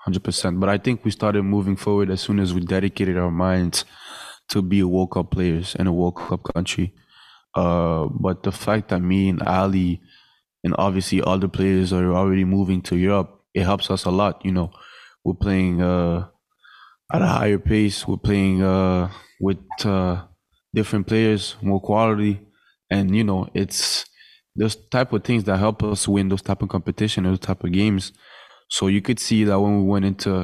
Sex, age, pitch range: male, 20-39, 90-100 Hz